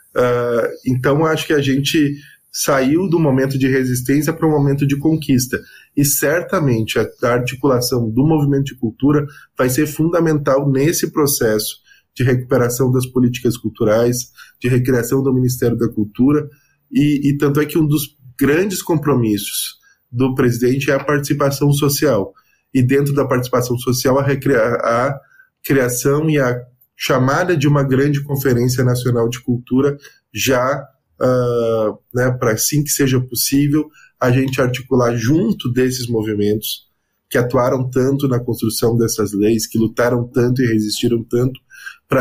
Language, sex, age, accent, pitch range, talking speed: Portuguese, male, 20-39, Brazilian, 120-140 Hz, 145 wpm